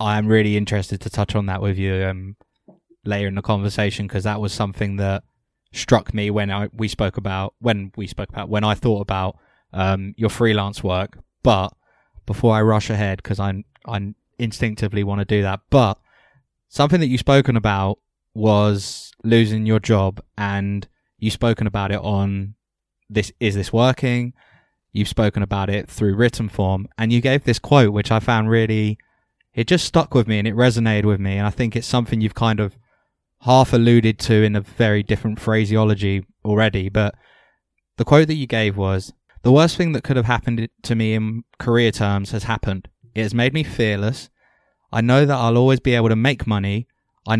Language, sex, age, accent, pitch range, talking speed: English, male, 20-39, British, 100-120 Hz, 190 wpm